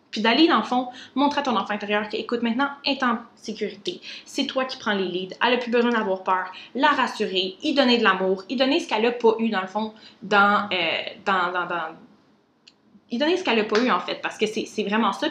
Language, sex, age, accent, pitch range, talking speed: French, female, 20-39, Canadian, 200-240 Hz, 255 wpm